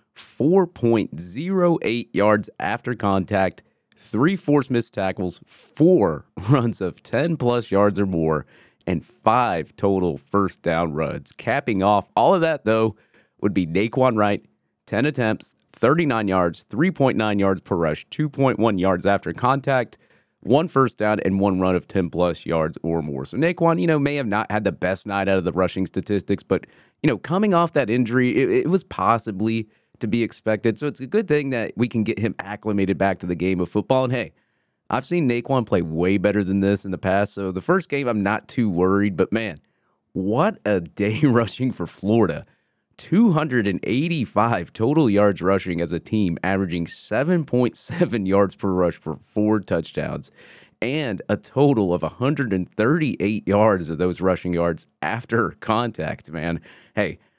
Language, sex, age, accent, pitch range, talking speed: English, male, 30-49, American, 95-125 Hz, 165 wpm